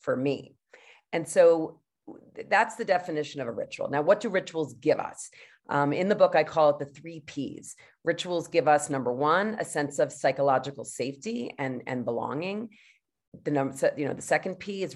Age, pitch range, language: 40-59, 140-175 Hz, English